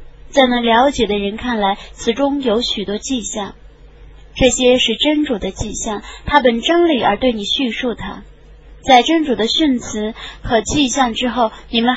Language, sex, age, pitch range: Chinese, female, 20-39, 220-275 Hz